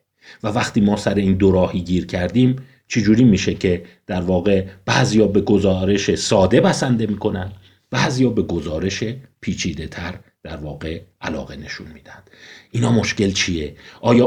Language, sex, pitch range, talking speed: Persian, male, 95-125 Hz, 145 wpm